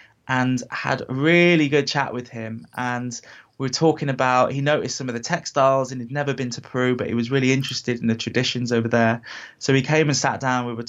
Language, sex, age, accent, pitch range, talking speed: English, male, 20-39, British, 120-145 Hz, 235 wpm